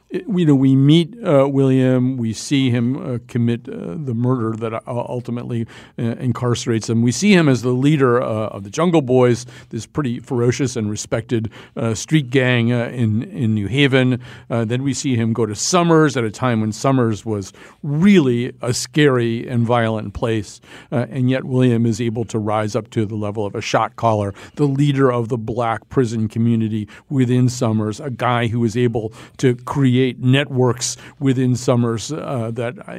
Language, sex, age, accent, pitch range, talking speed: English, male, 50-69, American, 115-135 Hz, 185 wpm